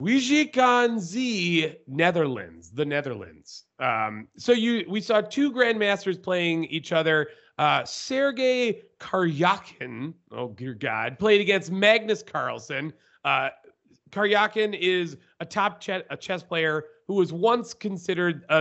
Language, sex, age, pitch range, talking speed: English, male, 30-49, 140-205 Hz, 125 wpm